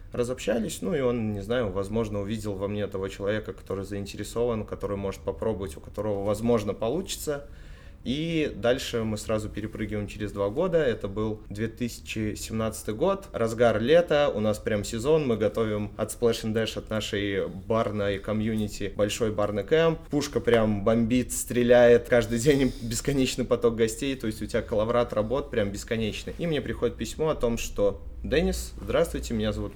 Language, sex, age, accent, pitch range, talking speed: Russian, male, 20-39, native, 100-120 Hz, 160 wpm